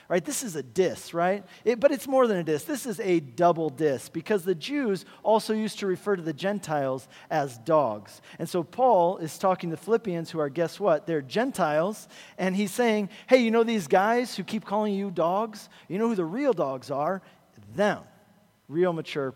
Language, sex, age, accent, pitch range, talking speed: English, male, 40-59, American, 145-200 Hz, 205 wpm